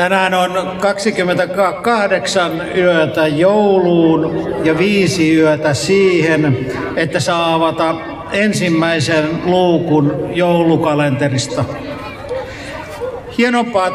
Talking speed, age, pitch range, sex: 70 wpm, 60-79, 165-195 Hz, male